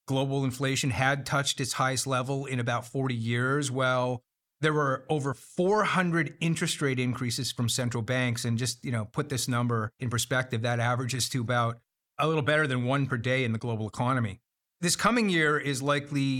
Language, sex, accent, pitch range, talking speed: English, male, American, 125-150 Hz, 185 wpm